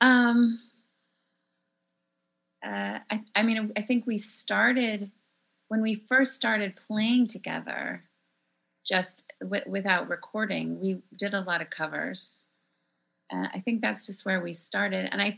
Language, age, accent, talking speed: English, 30-49, American, 135 wpm